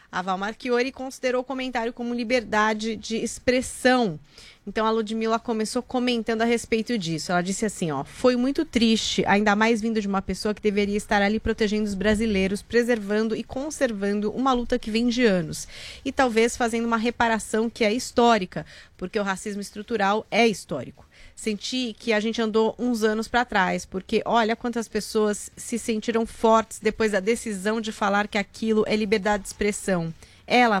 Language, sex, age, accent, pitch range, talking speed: Portuguese, female, 30-49, Brazilian, 210-235 Hz, 170 wpm